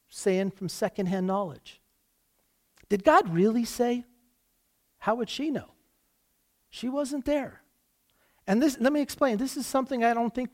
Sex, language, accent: male, English, American